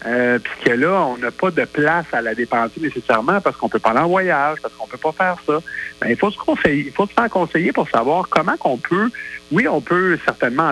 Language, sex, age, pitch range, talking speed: French, male, 50-69, 120-170 Hz, 250 wpm